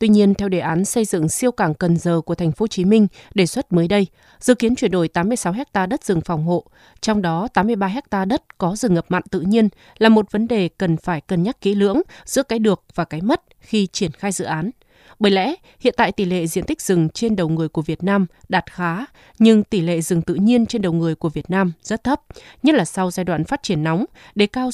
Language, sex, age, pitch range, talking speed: Vietnamese, female, 20-39, 175-225 Hz, 250 wpm